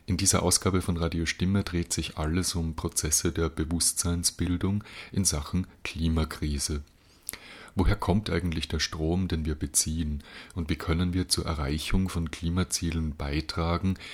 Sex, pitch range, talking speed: male, 80-95 Hz, 140 wpm